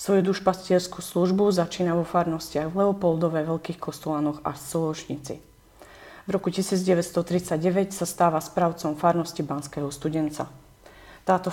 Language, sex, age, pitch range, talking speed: Slovak, female, 40-59, 155-180 Hz, 115 wpm